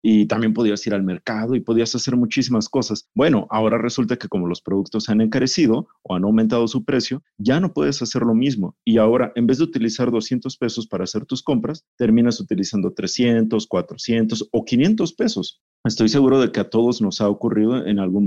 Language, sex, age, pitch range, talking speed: Spanish, male, 40-59, 100-125 Hz, 200 wpm